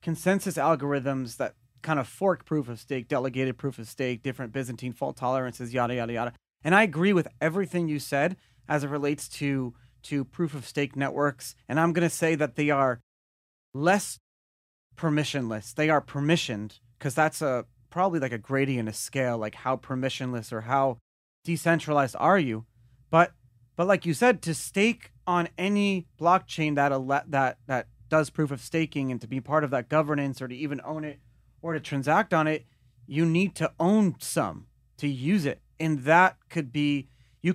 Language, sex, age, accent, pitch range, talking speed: English, male, 30-49, American, 125-165 Hz, 185 wpm